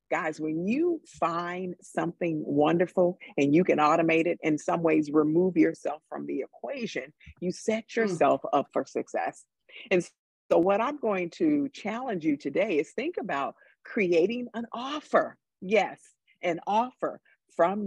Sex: female